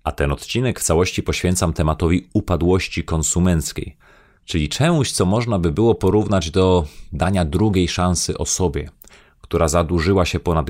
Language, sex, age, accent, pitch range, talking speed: Polish, male, 30-49, native, 80-95 Hz, 140 wpm